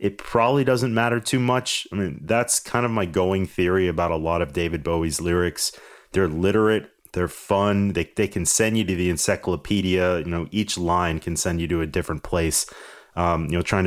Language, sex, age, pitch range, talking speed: English, male, 30-49, 85-105 Hz, 210 wpm